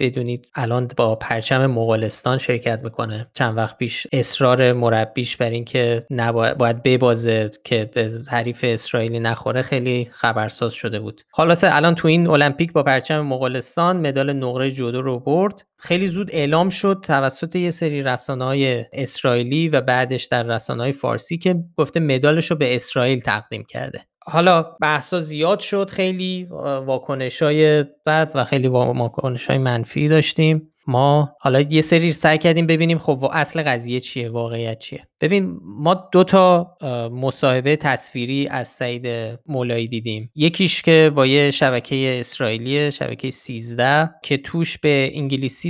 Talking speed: 145 wpm